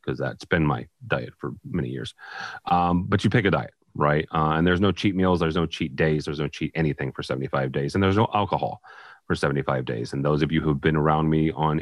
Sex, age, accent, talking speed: male, 30-49, American, 250 wpm